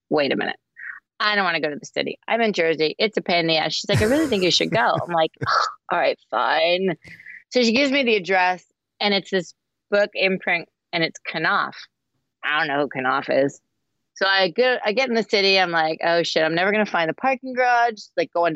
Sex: female